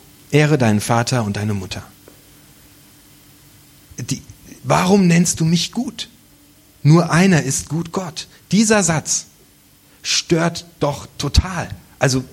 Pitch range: 120-165 Hz